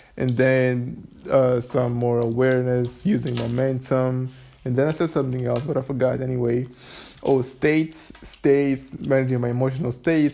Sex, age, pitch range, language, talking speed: male, 20-39, 125-140 Hz, English, 145 wpm